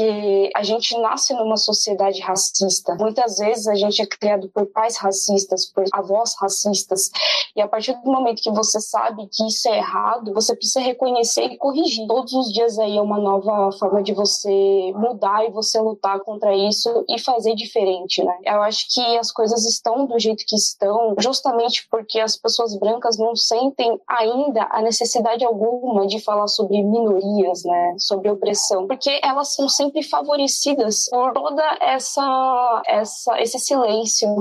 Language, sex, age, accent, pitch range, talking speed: Portuguese, female, 10-29, Brazilian, 200-235 Hz, 160 wpm